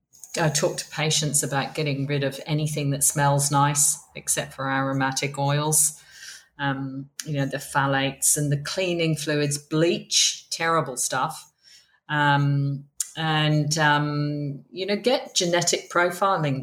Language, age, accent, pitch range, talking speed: English, 40-59, British, 140-160 Hz, 130 wpm